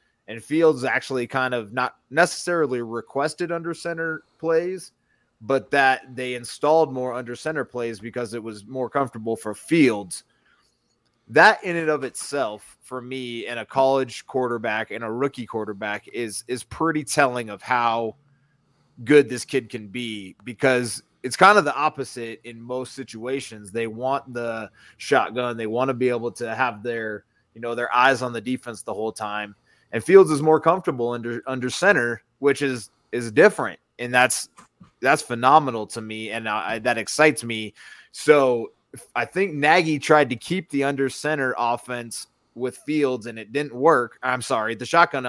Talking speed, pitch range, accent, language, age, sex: 170 wpm, 115-140 Hz, American, English, 30-49, male